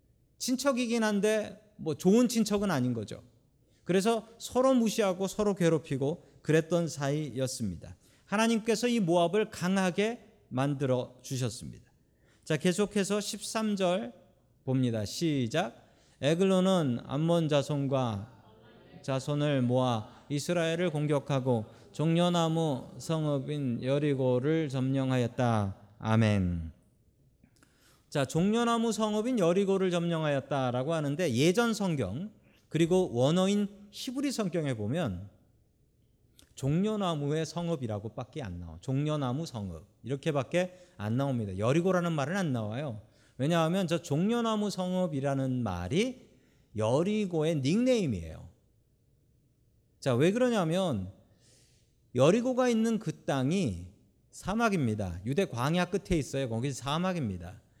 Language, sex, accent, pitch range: Korean, male, native, 125-185 Hz